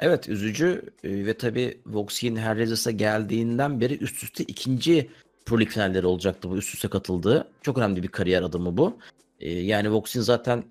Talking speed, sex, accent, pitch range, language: 155 wpm, male, native, 105-130 Hz, Turkish